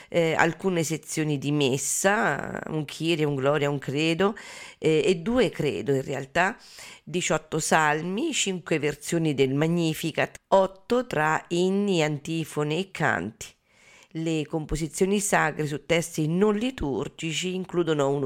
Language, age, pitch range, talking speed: Italian, 40-59, 150-190 Hz, 125 wpm